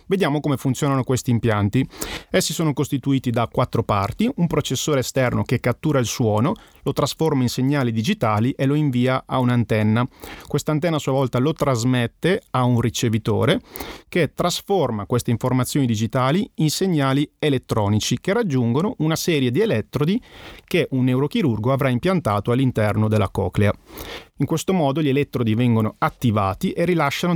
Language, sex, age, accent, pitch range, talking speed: Italian, male, 30-49, native, 120-150 Hz, 150 wpm